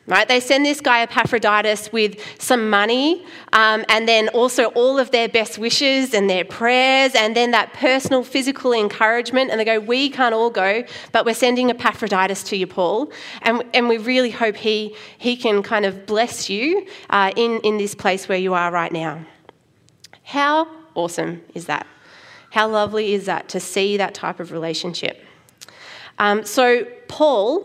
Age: 30-49